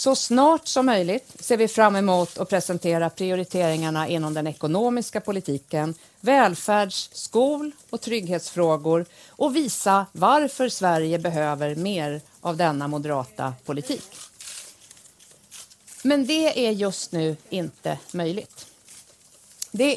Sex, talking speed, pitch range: female, 110 wpm, 165-250 Hz